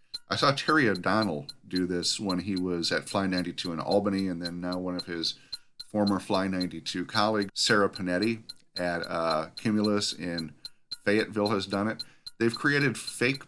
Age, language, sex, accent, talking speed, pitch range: 40-59, English, male, American, 165 wpm, 90-105 Hz